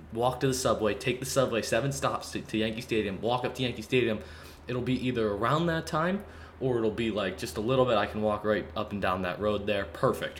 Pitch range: 90-115 Hz